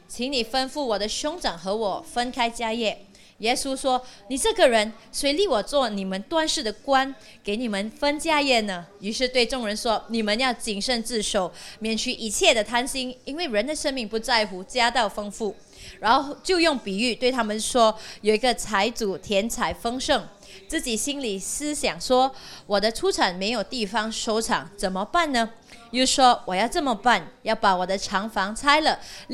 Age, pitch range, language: 20-39, 205-270 Hz, Chinese